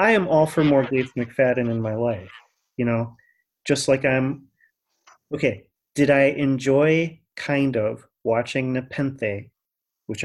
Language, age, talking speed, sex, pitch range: English, 30-49, 140 wpm, male, 115-150 Hz